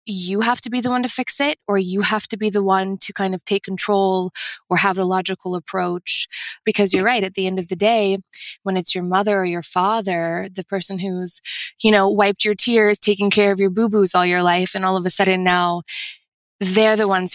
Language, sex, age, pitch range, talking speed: English, female, 20-39, 180-205 Hz, 230 wpm